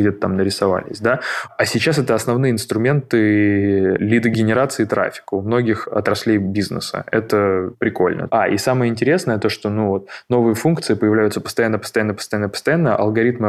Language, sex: Russian, male